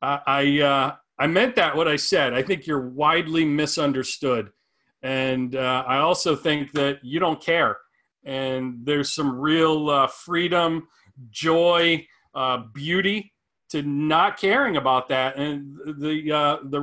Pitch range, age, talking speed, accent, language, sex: 135-165 Hz, 40-59, 145 wpm, American, English, male